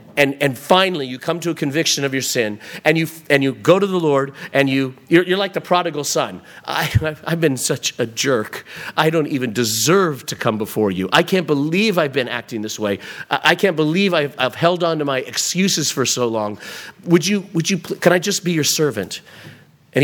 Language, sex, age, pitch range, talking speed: English, male, 40-59, 140-190 Hz, 220 wpm